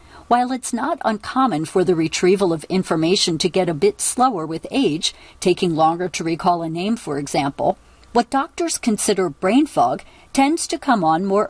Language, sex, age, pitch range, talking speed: English, female, 50-69, 175-240 Hz, 175 wpm